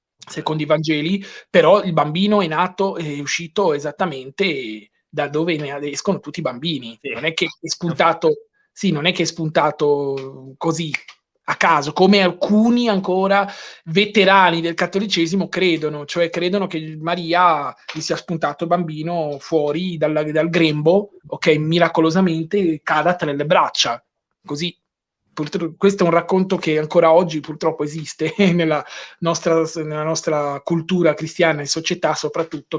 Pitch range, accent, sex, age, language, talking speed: 150-180 Hz, native, male, 20-39, Italian, 145 wpm